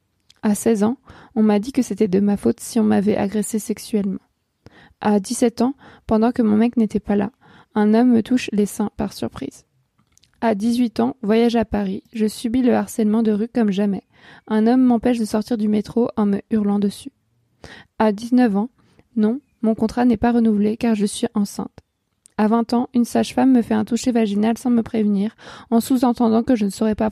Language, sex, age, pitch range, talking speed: French, female, 20-39, 205-240 Hz, 205 wpm